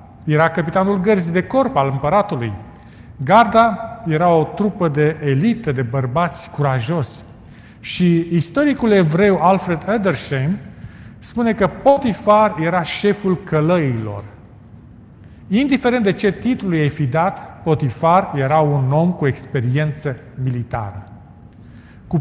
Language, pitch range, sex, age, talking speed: Romanian, 120-185 Hz, male, 40-59, 115 wpm